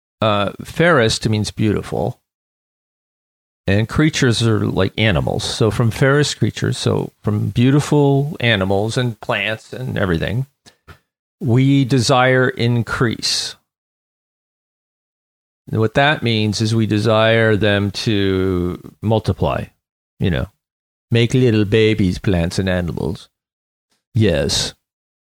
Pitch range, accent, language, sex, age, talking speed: 105-135 Hz, American, English, male, 40-59, 100 wpm